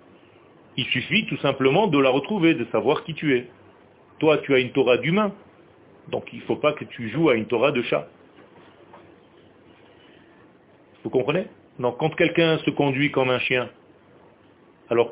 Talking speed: 165 wpm